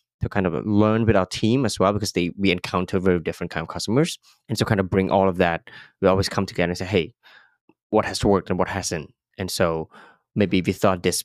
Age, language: 20-39, English